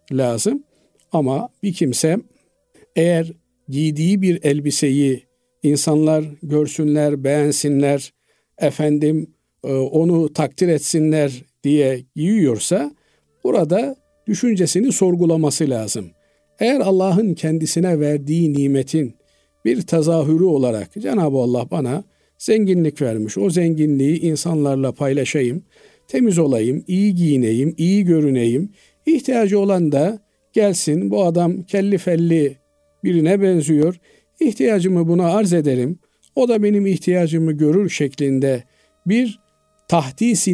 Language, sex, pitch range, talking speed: Turkish, male, 140-180 Hz, 100 wpm